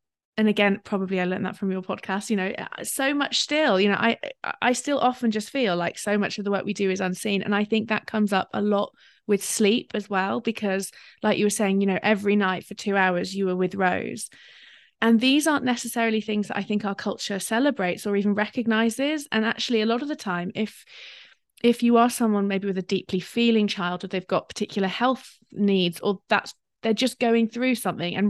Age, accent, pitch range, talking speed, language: 20-39, British, 190-220 Hz, 225 wpm, English